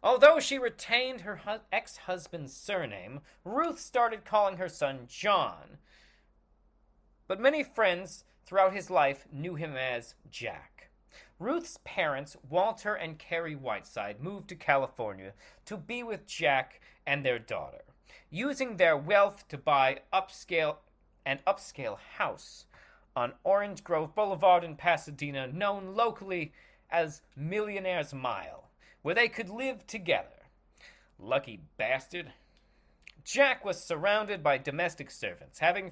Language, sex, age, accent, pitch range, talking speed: English, male, 40-59, American, 150-220 Hz, 120 wpm